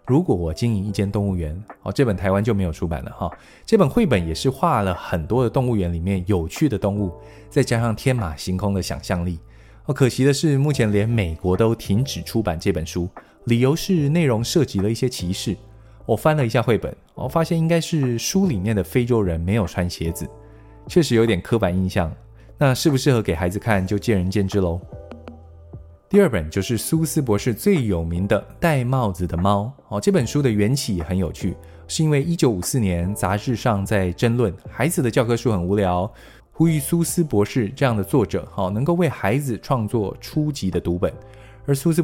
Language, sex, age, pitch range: Chinese, male, 20-39, 95-130 Hz